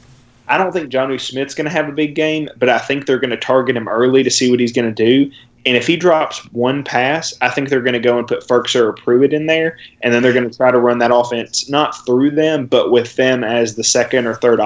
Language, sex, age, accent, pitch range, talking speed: English, male, 20-39, American, 120-135 Hz, 275 wpm